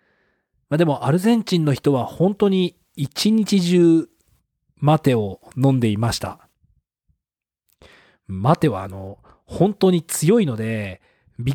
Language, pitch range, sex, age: Japanese, 120-170 Hz, male, 40-59